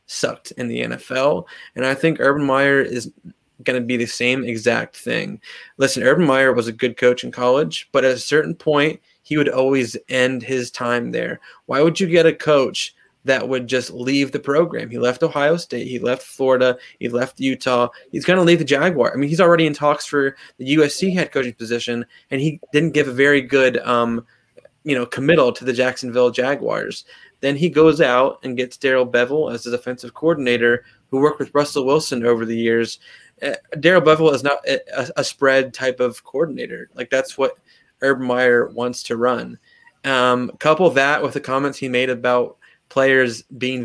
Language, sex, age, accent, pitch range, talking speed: English, male, 20-39, American, 120-145 Hz, 195 wpm